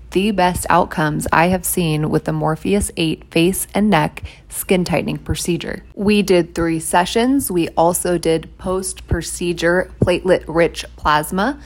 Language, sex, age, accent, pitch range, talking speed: English, female, 20-39, American, 155-180 Hz, 145 wpm